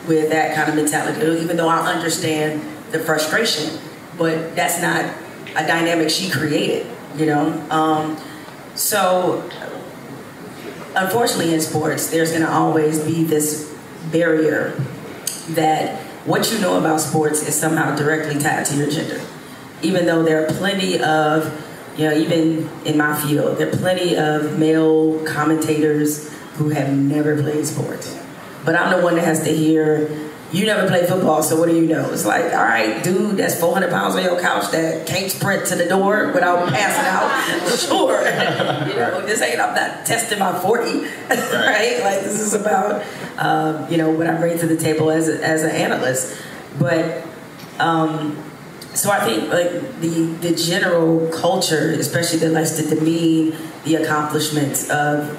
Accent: American